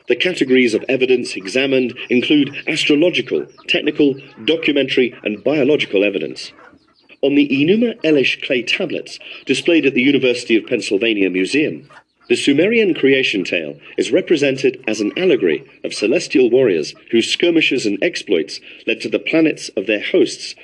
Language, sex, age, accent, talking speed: English, male, 40-59, British, 140 wpm